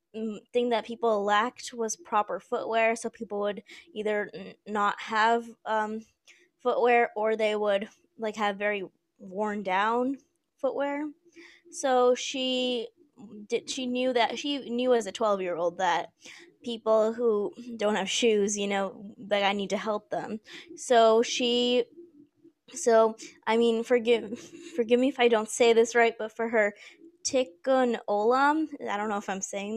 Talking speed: 155 wpm